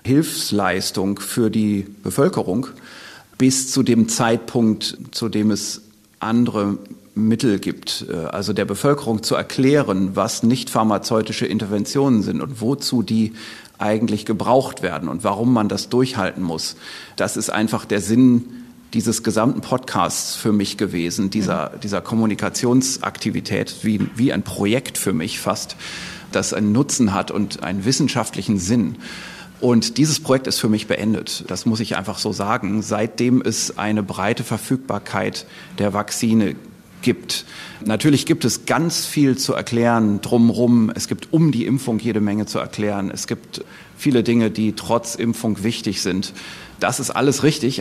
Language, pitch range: German, 105-125 Hz